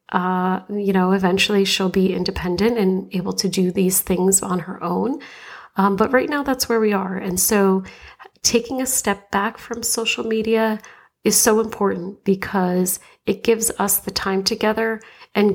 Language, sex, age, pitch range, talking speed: English, female, 30-49, 185-215 Hz, 170 wpm